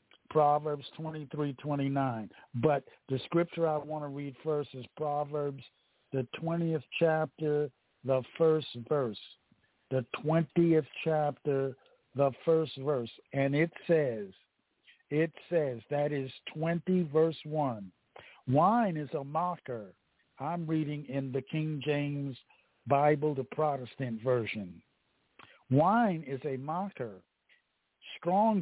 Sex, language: male, English